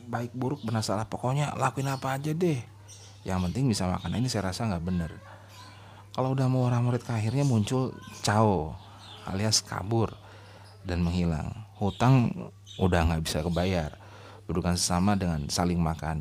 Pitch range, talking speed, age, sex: 85-105 Hz, 150 wpm, 30-49, male